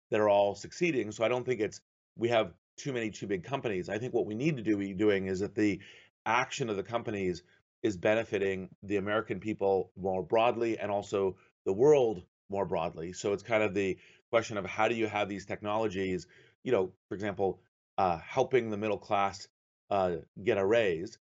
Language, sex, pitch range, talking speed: English, male, 95-115 Hz, 200 wpm